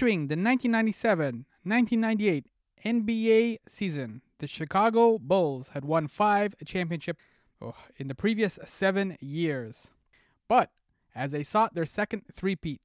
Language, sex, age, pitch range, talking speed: English, male, 20-39, 150-200 Hz, 110 wpm